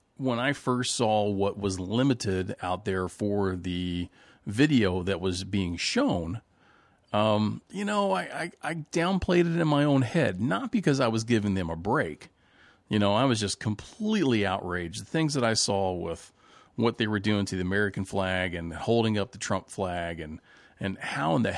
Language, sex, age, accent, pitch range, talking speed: English, male, 40-59, American, 95-115 Hz, 190 wpm